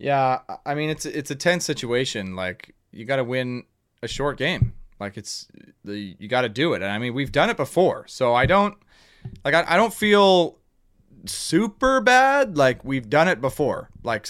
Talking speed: 195 wpm